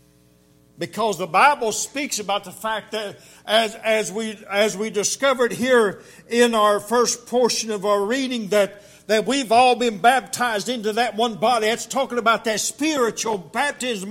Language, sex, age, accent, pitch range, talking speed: English, male, 60-79, American, 135-225 Hz, 160 wpm